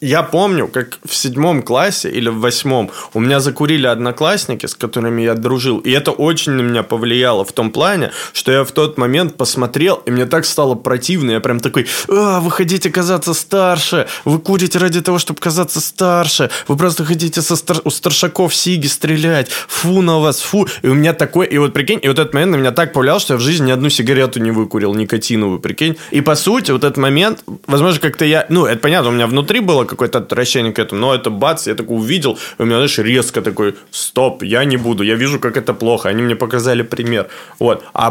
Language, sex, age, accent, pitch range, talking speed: Russian, male, 20-39, native, 125-155 Hz, 215 wpm